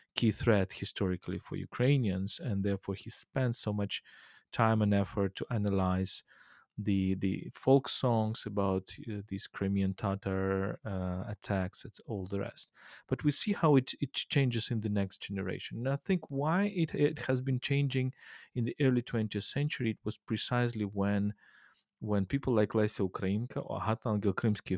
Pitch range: 95-120 Hz